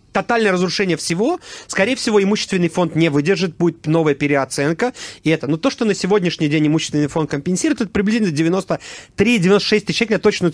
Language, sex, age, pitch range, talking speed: Russian, male, 30-49, 160-220 Hz, 170 wpm